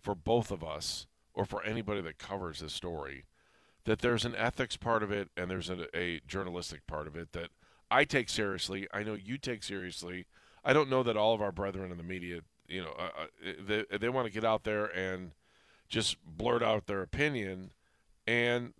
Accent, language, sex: American, English, male